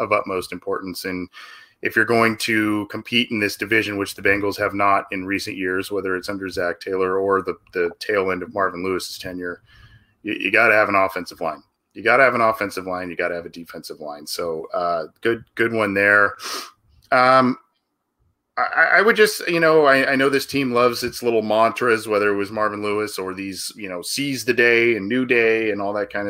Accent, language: American, English